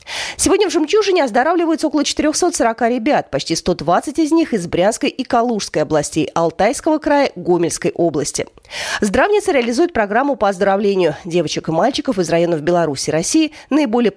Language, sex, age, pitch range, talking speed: Russian, female, 30-49, 175-295 Hz, 145 wpm